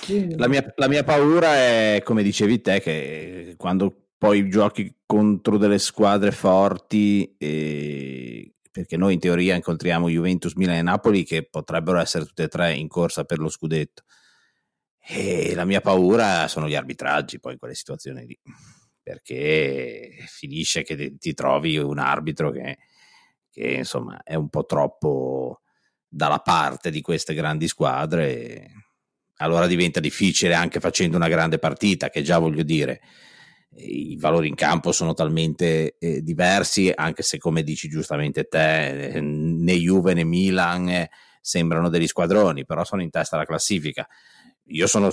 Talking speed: 145 wpm